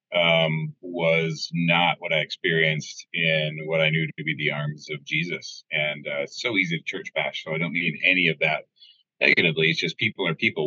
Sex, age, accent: male, 30-49, American